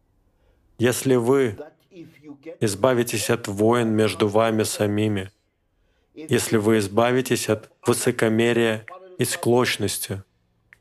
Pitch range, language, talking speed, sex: 90-115 Hz, Russian, 85 wpm, male